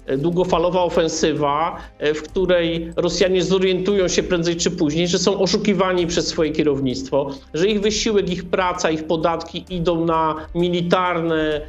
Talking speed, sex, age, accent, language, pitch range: 135 wpm, male, 50-69, native, Polish, 160-190 Hz